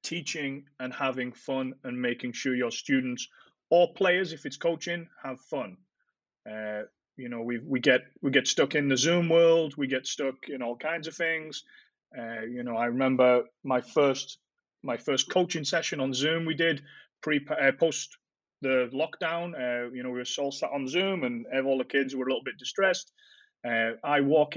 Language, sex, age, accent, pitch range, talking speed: English, male, 30-49, British, 125-155 Hz, 190 wpm